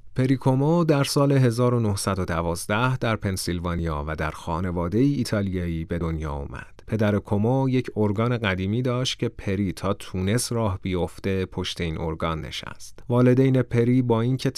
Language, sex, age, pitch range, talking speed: Persian, male, 30-49, 90-115 Hz, 140 wpm